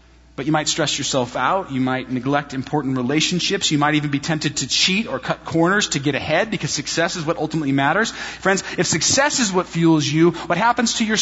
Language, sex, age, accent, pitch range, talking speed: English, male, 30-49, American, 125-205 Hz, 220 wpm